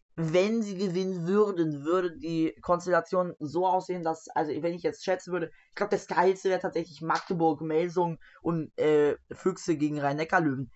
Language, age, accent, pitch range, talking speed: German, 20-39, German, 145-185 Hz, 160 wpm